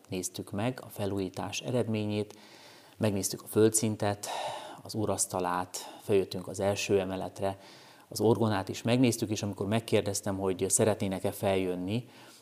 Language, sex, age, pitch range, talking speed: Hungarian, male, 30-49, 95-110 Hz, 115 wpm